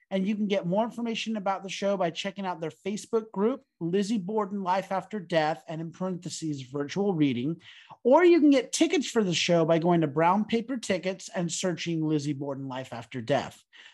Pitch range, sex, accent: 155-215 Hz, male, American